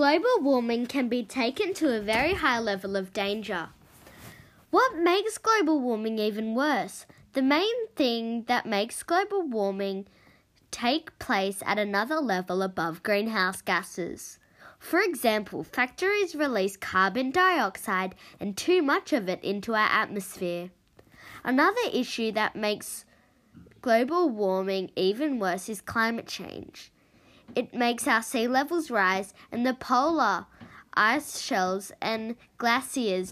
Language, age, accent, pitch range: English, 10-29, Australian, 205-285 Hz